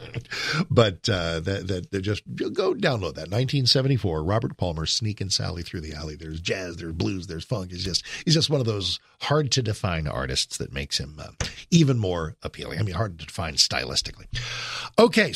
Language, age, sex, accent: English, 50-69, male, American